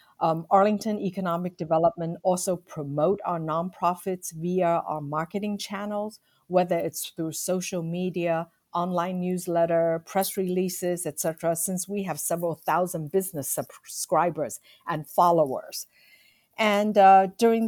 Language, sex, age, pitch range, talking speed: English, female, 50-69, 155-185 Hz, 120 wpm